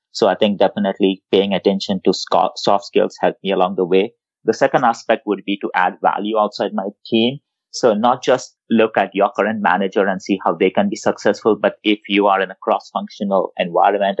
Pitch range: 95-115 Hz